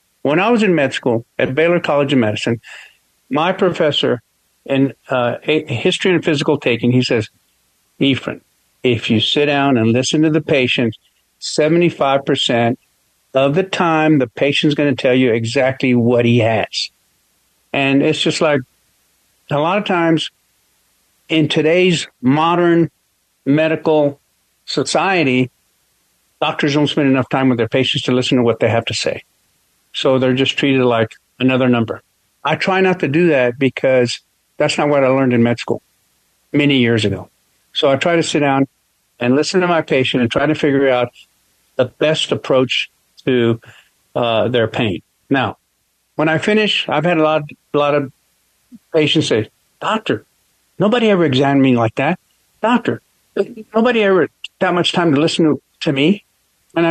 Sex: male